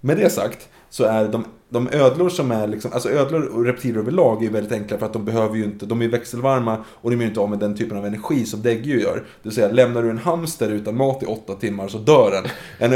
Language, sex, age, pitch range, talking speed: Swedish, male, 20-39, 105-120 Hz, 260 wpm